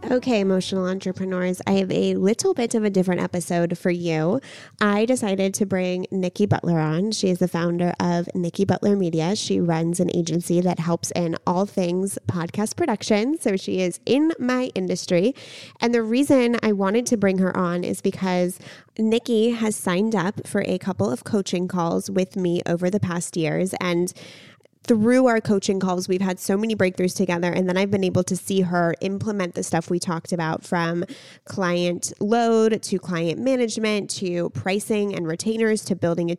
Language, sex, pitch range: English, female, 175-205 Hz